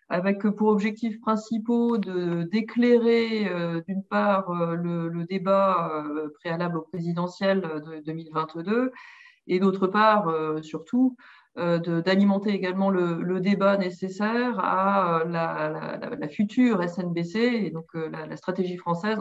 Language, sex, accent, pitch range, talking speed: French, female, French, 170-210 Hz, 145 wpm